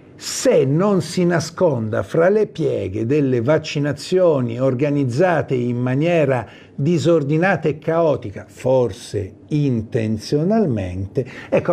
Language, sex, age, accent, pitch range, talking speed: Italian, male, 50-69, native, 120-165 Hz, 90 wpm